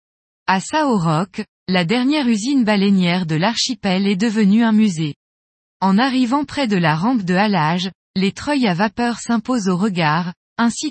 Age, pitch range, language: 20-39, 180-245 Hz, French